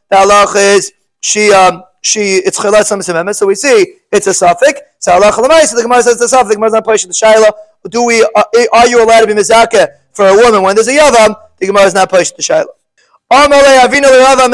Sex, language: male, English